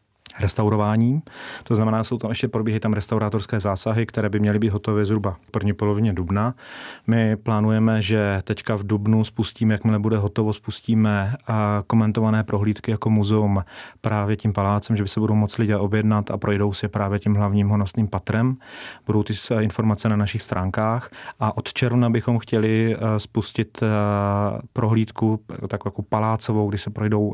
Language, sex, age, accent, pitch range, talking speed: Czech, male, 30-49, native, 105-115 Hz, 160 wpm